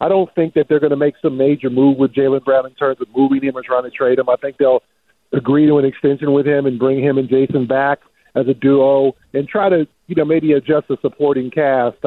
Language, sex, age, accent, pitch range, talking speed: English, male, 50-69, American, 135-155 Hz, 260 wpm